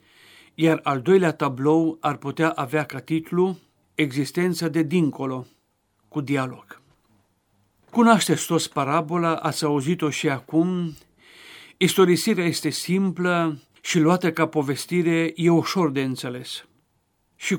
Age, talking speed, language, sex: 50-69, 115 wpm, Romanian, male